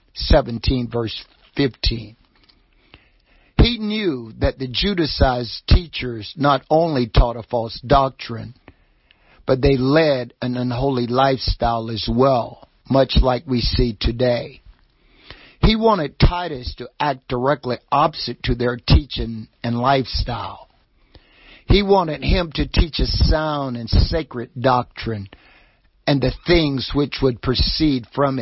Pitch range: 115-140 Hz